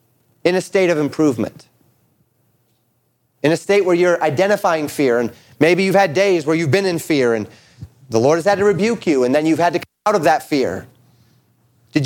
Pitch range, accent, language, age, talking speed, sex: 135-185 Hz, American, English, 30-49, 205 wpm, male